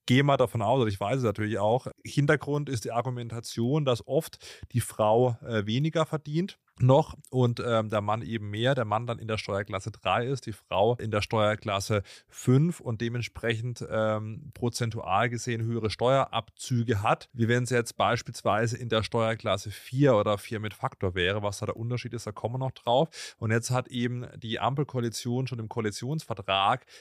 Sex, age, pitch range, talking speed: male, 30-49, 110-130 Hz, 180 wpm